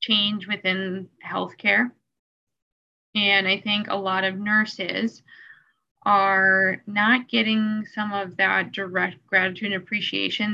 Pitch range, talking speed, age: 180-210 Hz, 115 wpm, 10-29